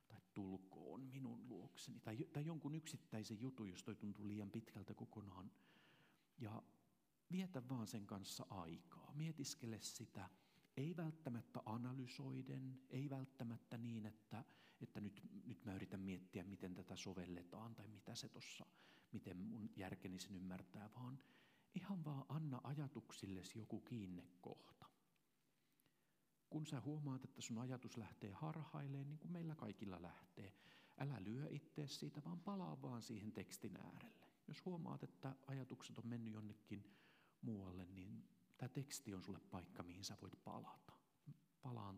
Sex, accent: male, native